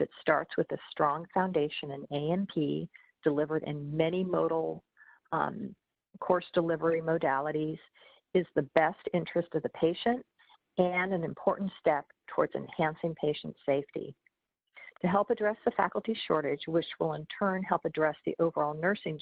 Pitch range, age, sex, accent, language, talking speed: 155-190 Hz, 50-69, female, American, English, 145 wpm